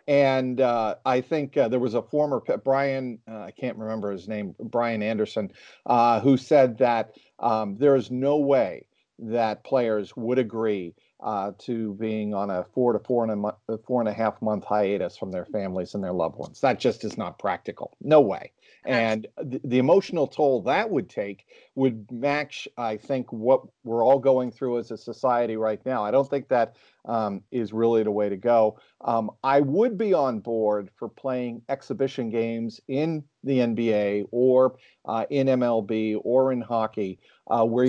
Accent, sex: American, male